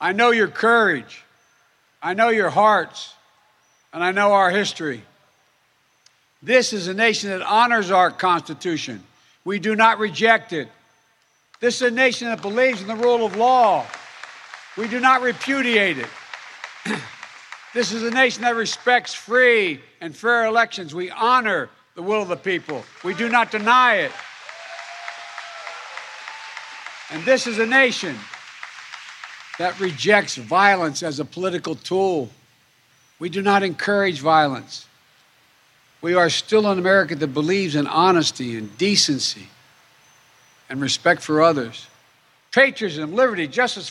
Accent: American